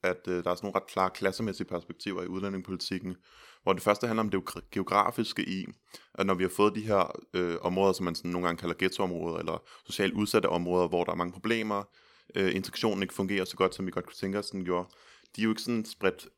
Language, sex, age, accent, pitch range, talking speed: Danish, male, 20-39, native, 90-100 Hz, 230 wpm